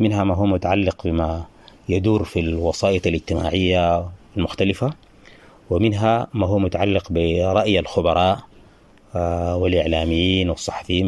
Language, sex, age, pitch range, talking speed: English, male, 30-49, 85-110 Hz, 95 wpm